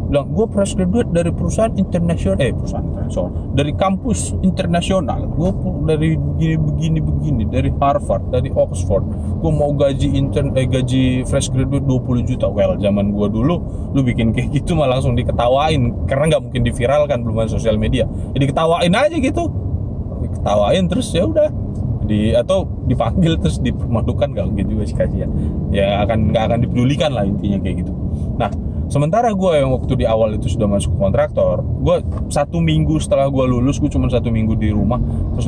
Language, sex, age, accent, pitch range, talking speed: Indonesian, male, 20-39, native, 95-125 Hz, 170 wpm